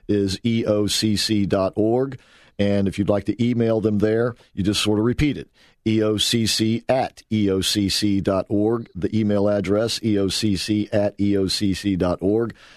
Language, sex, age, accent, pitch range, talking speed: English, male, 50-69, American, 100-115 Hz, 115 wpm